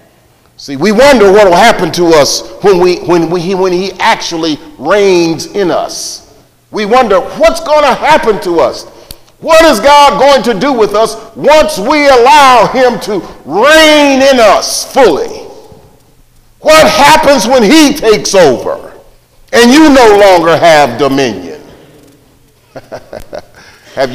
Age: 40-59